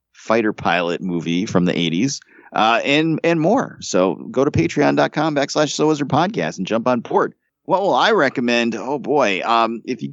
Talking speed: 165 wpm